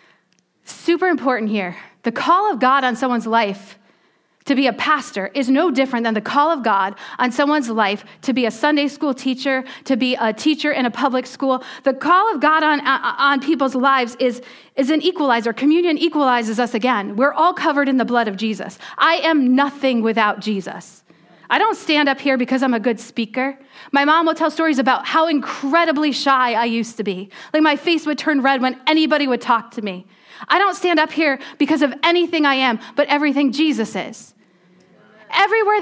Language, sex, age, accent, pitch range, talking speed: English, female, 40-59, American, 225-300 Hz, 200 wpm